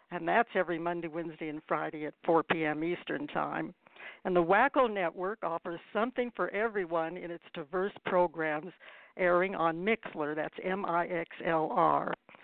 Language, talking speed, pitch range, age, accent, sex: English, 140 wpm, 170-215 Hz, 60-79, American, female